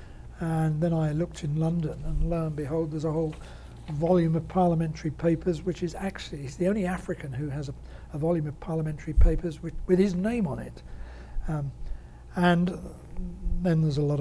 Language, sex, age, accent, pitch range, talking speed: English, male, 60-79, British, 135-180 Hz, 185 wpm